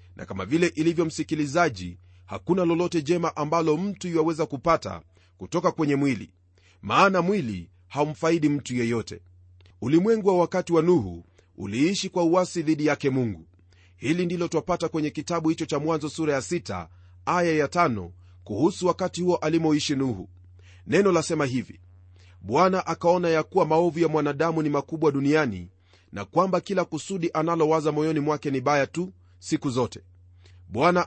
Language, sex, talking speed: Swahili, male, 145 wpm